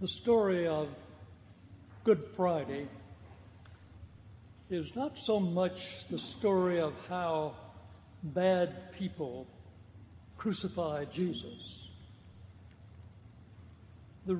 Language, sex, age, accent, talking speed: English, male, 60-79, American, 75 wpm